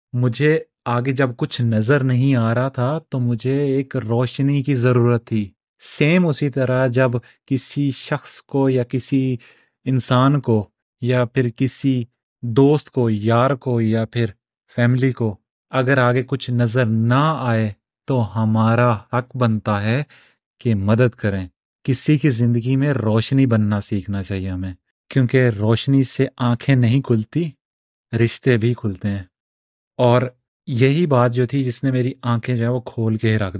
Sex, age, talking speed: male, 30-49, 155 wpm